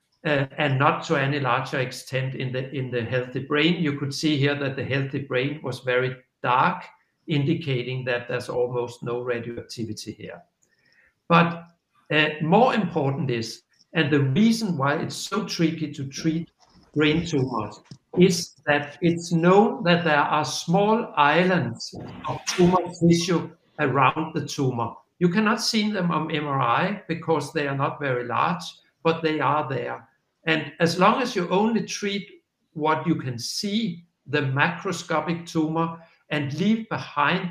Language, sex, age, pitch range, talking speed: Danish, male, 60-79, 135-170 Hz, 150 wpm